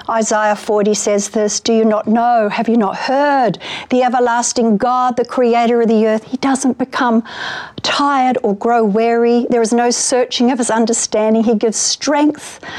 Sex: female